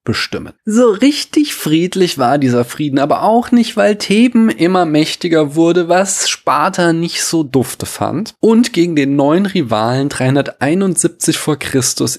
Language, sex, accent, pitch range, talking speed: German, male, German, 120-185 Hz, 140 wpm